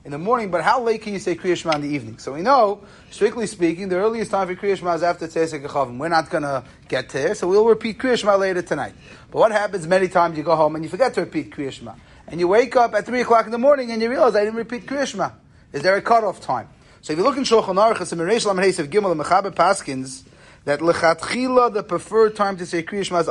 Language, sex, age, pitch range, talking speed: English, male, 30-49, 160-220 Hz, 225 wpm